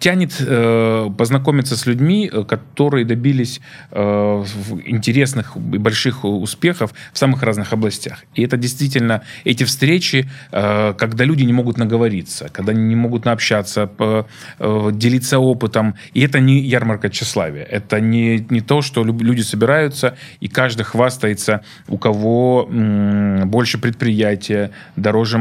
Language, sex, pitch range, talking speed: Russian, male, 105-125 Hz, 135 wpm